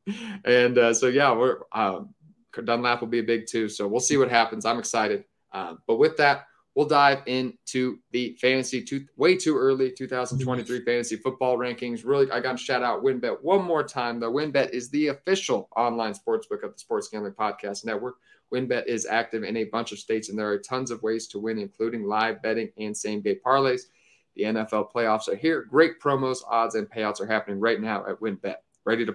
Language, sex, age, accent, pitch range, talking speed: English, male, 30-49, American, 110-130 Hz, 200 wpm